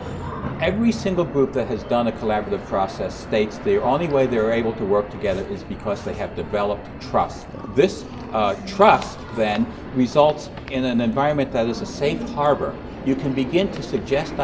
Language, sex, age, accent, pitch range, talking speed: English, male, 60-79, American, 115-135 Hz, 175 wpm